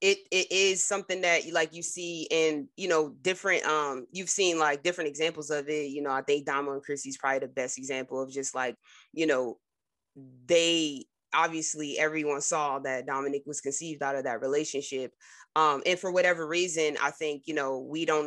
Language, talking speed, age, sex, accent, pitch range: English, 195 wpm, 20-39, female, American, 140-175 Hz